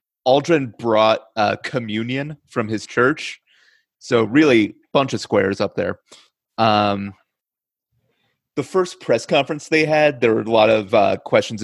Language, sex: English, male